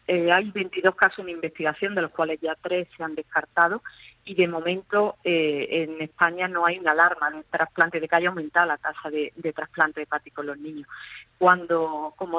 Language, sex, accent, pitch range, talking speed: Spanish, female, Spanish, 160-185 Hz, 200 wpm